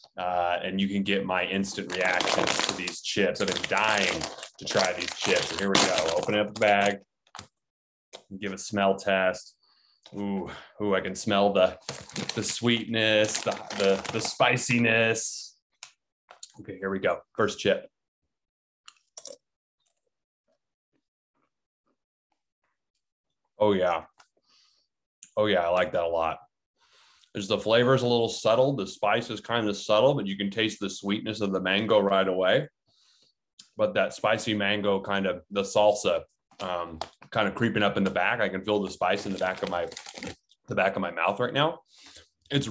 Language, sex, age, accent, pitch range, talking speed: English, male, 20-39, American, 95-115 Hz, 160 wpm